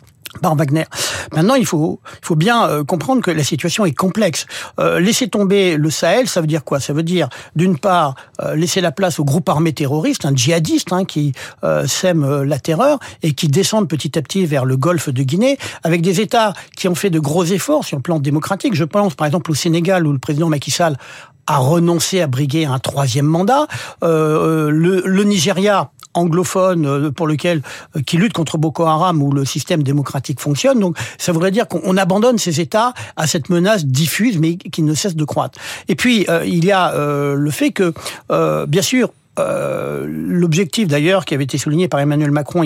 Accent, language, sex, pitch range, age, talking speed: French, French, male, 150-185 Hz, 60-79, 205 wpm